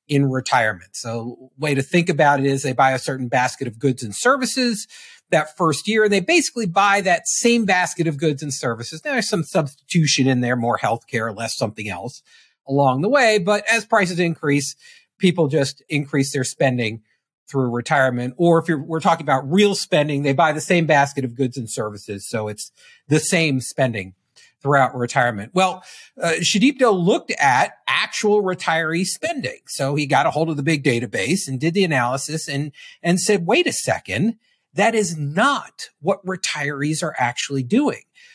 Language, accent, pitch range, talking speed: English, American, 135-200 Hz, 180 wpm